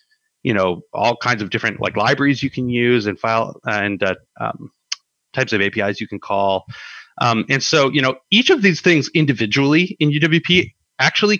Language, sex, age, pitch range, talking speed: English, male, 30-49, 110-145 Hz, 190 wpm